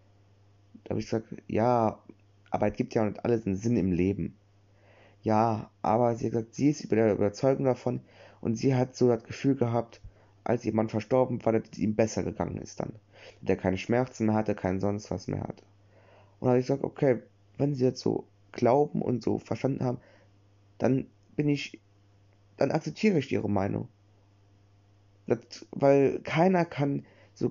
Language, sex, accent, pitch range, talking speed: German, male, German, 100-120 Hz, 180 wpm